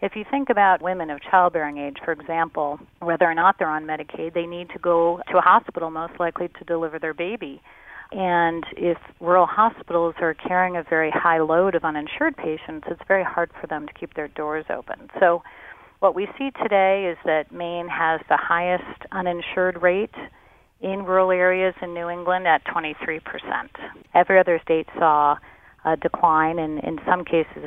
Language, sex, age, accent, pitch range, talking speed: English, female, 40-59, American, 160-185 Hz, 180 wpm